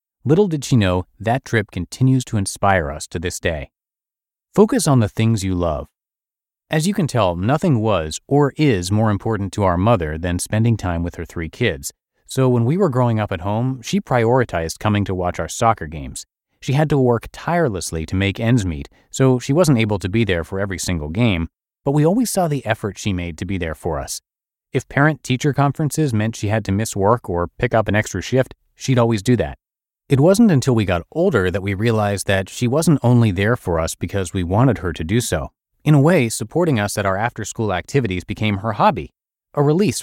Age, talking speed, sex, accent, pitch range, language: 30-49, 215 wpm, male, American, 95-125 Hz, English